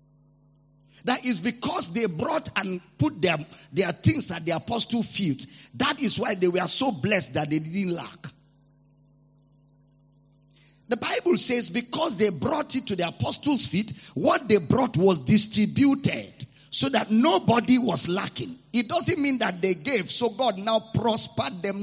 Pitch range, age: 145-230 Hz, 50-69